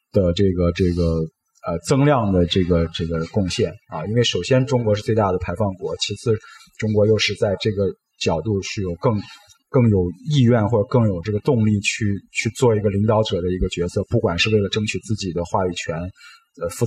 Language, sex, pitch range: Chinese, male, 95-115 Hz